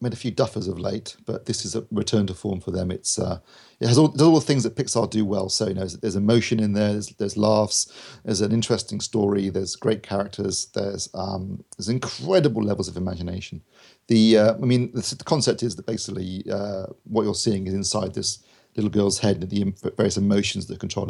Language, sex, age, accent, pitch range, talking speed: English, male, 40-59, British, 95-115 Hz, 215 wpm